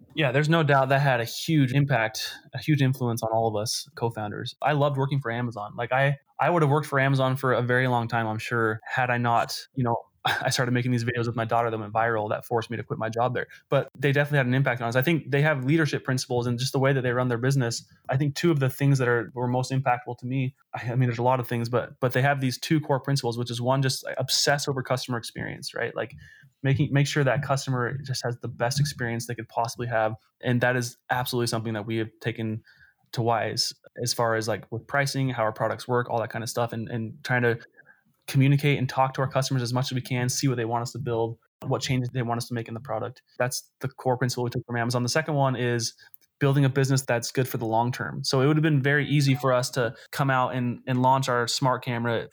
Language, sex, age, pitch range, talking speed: English, male, 20-39, 115-135 Hz, 265 wpm